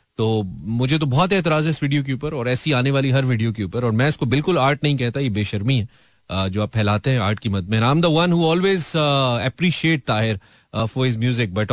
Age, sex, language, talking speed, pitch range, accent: 30-49, male, Hindi, 215 wpm, 110-155 Hz, native